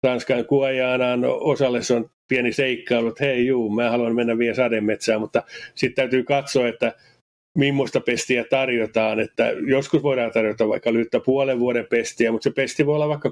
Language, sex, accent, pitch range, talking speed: Finnish, male, native, 120-140 Hz, 165 wpm